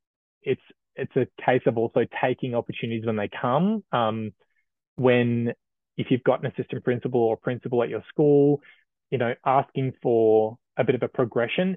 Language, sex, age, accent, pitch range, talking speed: English, male, 20-39, Australian, 115-135 Hz, 170 wpm